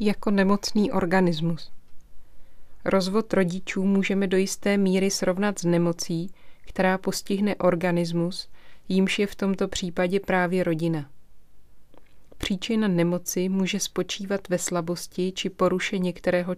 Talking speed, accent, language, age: 110 wpm, native, Czech, 30-49